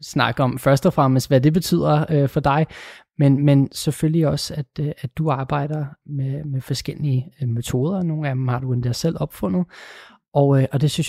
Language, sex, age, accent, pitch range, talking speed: Danish, male, 20-39, native, 135-160 Hz, 210 wpm